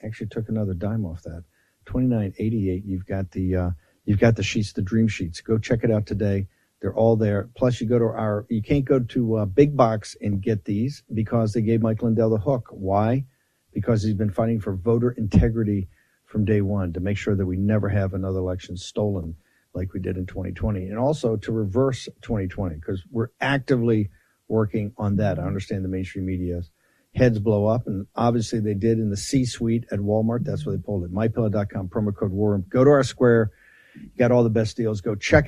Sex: male